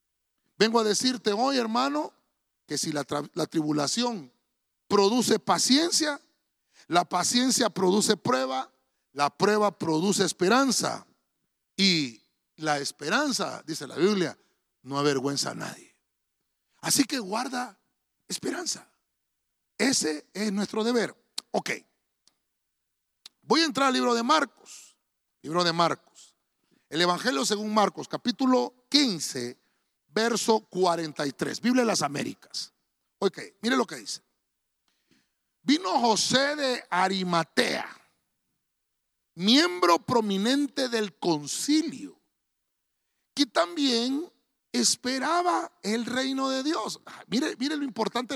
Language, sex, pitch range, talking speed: Spanish, male, 175-260 Hz, 110 wpm